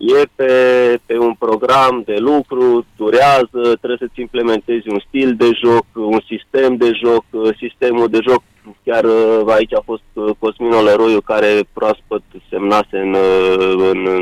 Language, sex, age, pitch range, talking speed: Romanian, male, 30-49, 105-140 Hz, 140 wpm